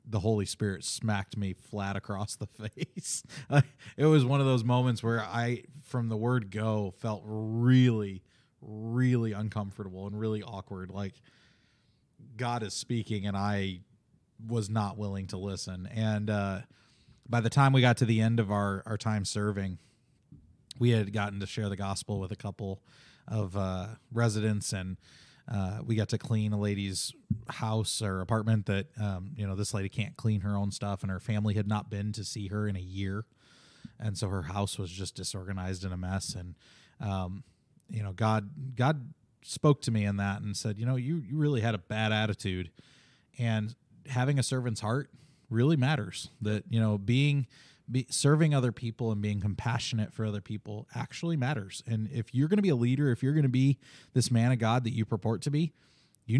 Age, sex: 20-39, male